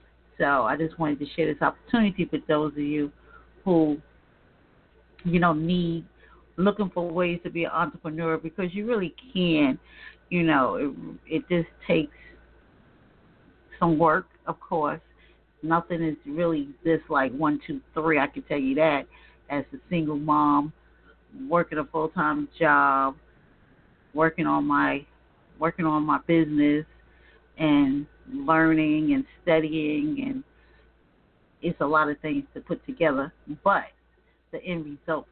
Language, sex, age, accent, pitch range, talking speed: English, female, 40-59, American, 150-180 Hz, 140 wpm